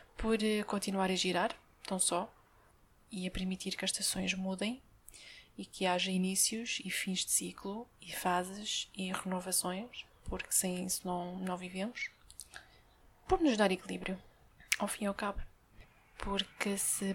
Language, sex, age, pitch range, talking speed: Portuguese, female, 20-39, 190-225 Hz, 145 wpm